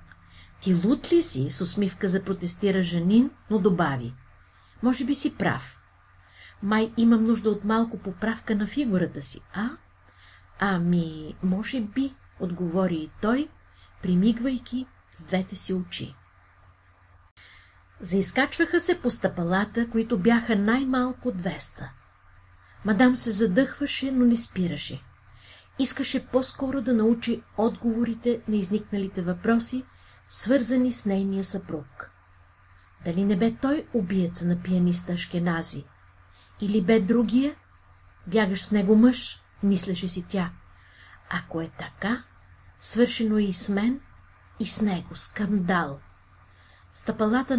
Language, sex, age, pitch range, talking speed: Bulgarian, female, 50-69, 145-235 Hz, 115 wpm